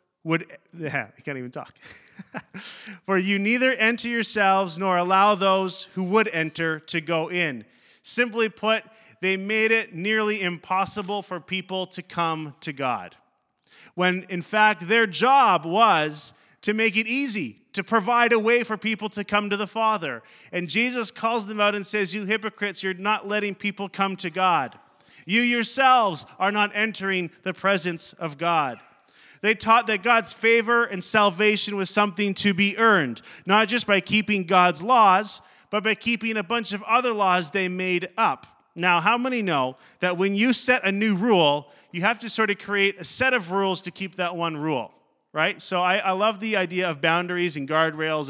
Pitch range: 180-220 Hz